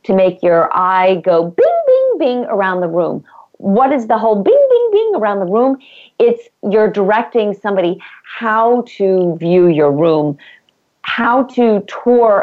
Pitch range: 185-230 Hz